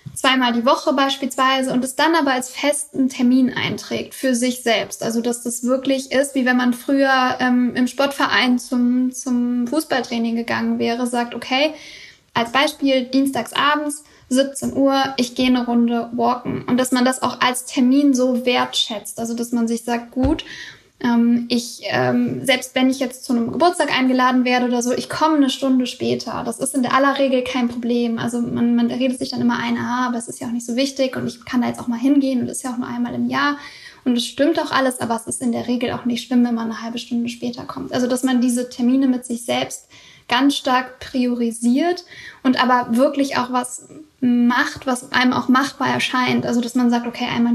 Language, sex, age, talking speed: German, female, 10-29, 210 wpm